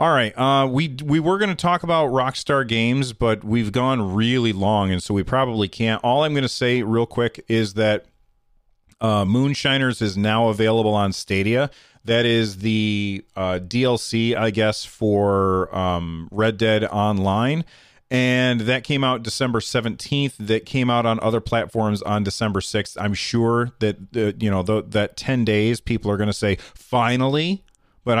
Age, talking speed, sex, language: 30-49, 175 wpm, male, English